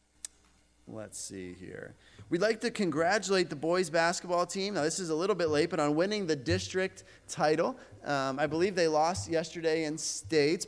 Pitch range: 140-185 Hz